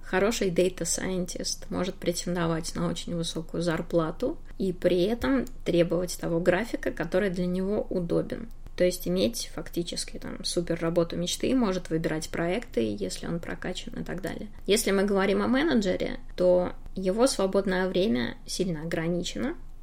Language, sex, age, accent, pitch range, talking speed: Russian, female, 20-39, native, 175-205 Hz, 140 wpm